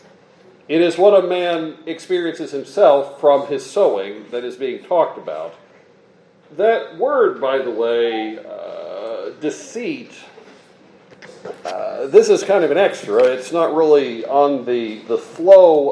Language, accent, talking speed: English, American, 135 wpm